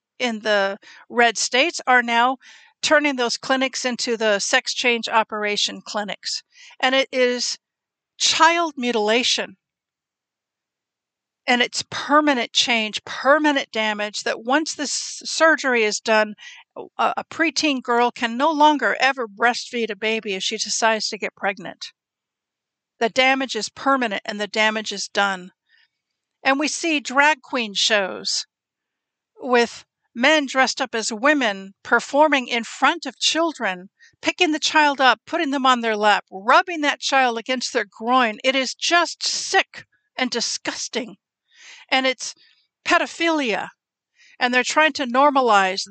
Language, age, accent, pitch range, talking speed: English, 50-69, American, 220-290 Hz, 135 wpm